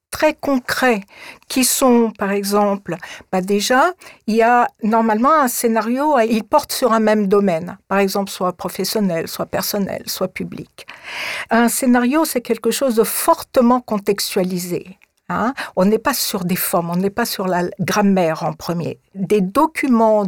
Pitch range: 190-250 Hz